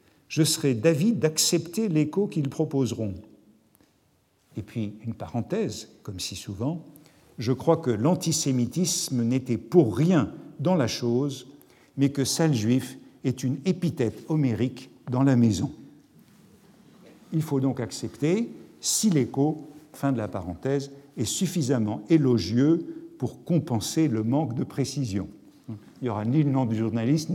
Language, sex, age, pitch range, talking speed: French, male, 50-69, 120-155 Hz, 135 wpm